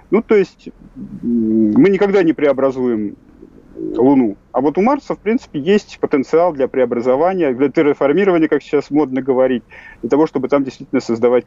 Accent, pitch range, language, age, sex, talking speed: native, 125-165 Hz, Russian, 40-59, male, 155 wpm